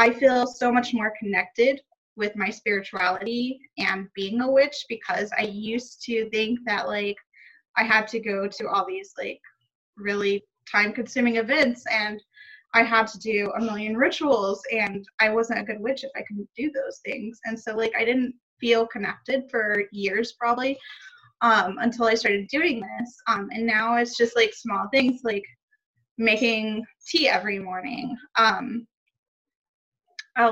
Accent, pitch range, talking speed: American, 210-250 Hz, 165 wpm